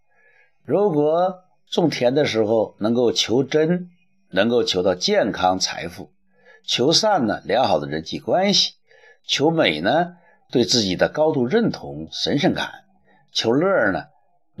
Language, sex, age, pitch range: Chinese, male, 60-79, 110-185 Hz